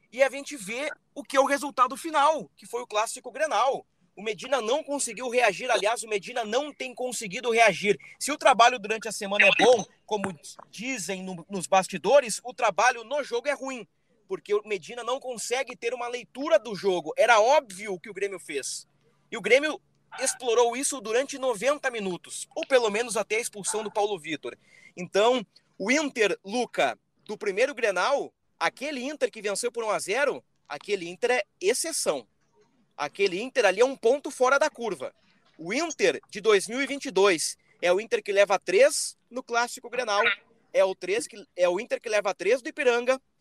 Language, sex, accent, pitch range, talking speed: Portuguese, male, Brazilian, 210-275 Hz, 180 wpm